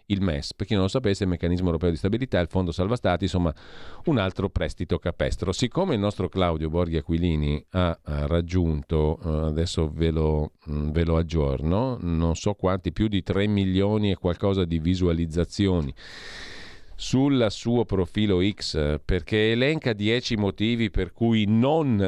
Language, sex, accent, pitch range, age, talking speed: Italian, male, native, 80-105 Hz, 40-59, 150 wpm